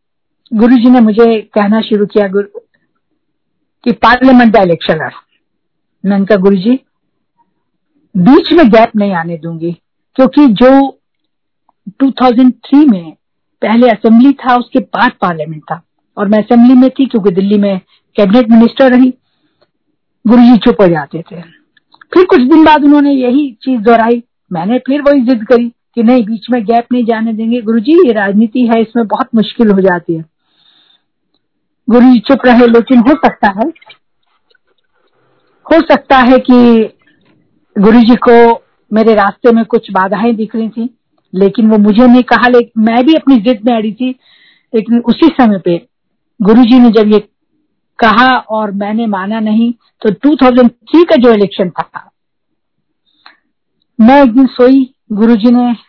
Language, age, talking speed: Hindi, 50-69, 150 wpm